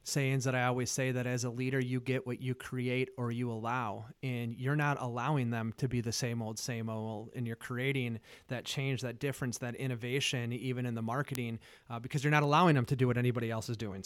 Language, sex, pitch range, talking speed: English, male, 120-145 Hz, 235 wpm